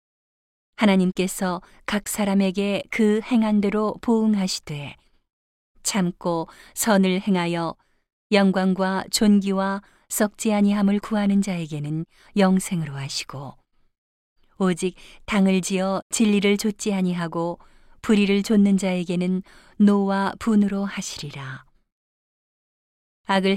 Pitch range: 180-205 Hz